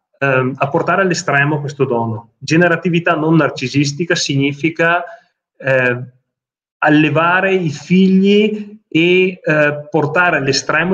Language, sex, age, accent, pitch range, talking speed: Italian, male, 30-49, native, 130-160 Hz, 100 wpm